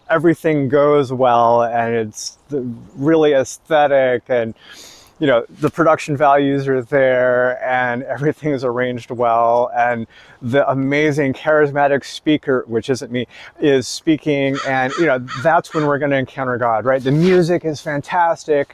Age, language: 30-49, English